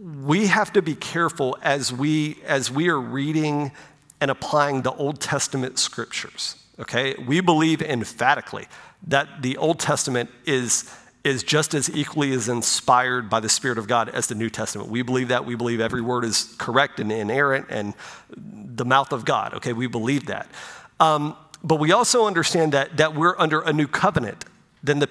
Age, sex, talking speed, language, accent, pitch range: 40-59, male, 180 wpm, English, American, 130-155 Hz